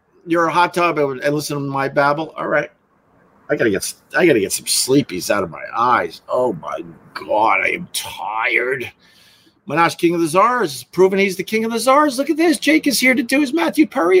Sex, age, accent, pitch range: male, 50-69, American, 125-195 Hz